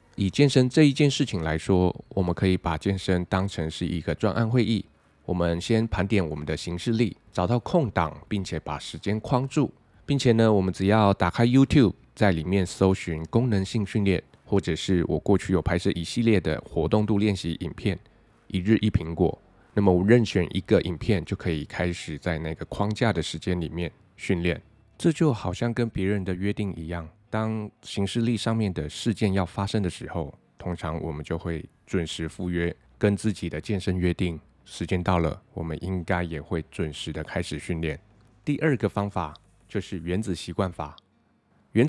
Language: Chinese